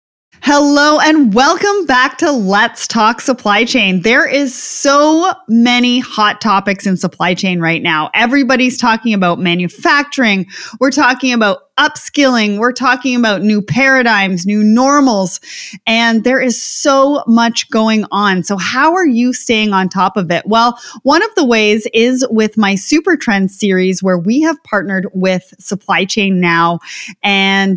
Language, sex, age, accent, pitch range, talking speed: English, female, 30-49, American, 200-260 Hz, 155 wpm